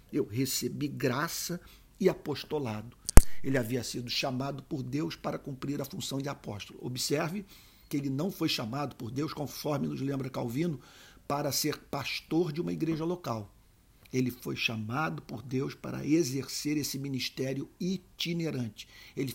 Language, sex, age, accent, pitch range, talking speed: Portuguese, male, 50-69, Brazilian, 125-160 Hz, 145 wpm